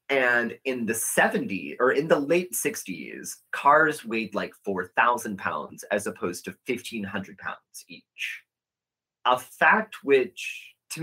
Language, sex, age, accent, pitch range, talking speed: English, male, 30-49, American, 120-185 Hz, 130 wpm